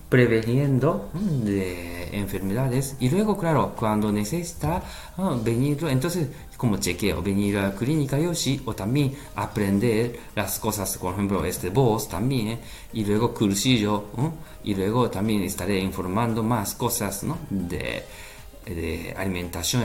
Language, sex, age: Japanese, male, 40-59